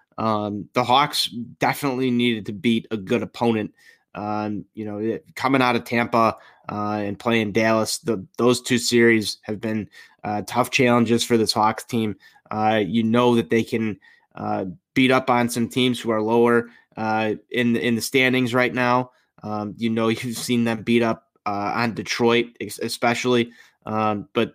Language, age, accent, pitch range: English, 20-39, American, 110-120 Hz